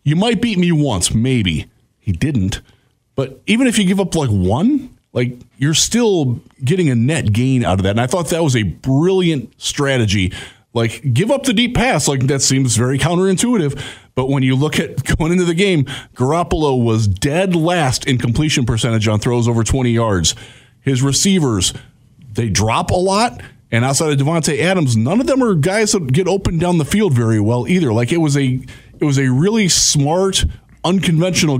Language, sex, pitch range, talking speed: English, male, 120-170 Hz, 190 wpm